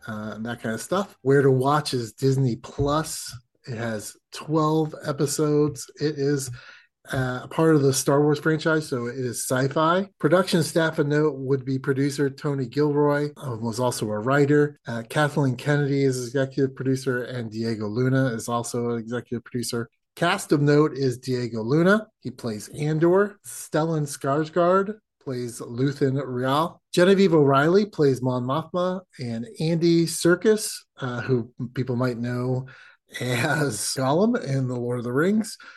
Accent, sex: American, male